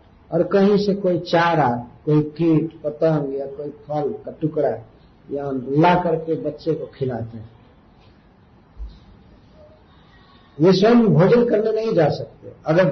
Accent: native